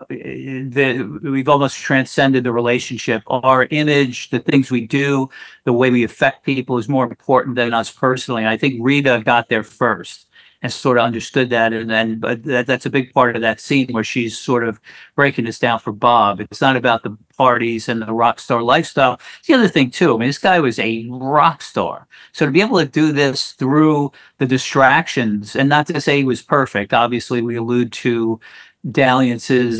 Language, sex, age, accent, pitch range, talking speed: English, male, 50-69, American, 115-135 Hz, 195 wpm